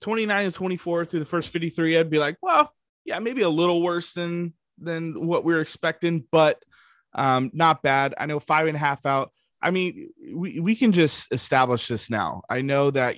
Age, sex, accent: 20-39, male, American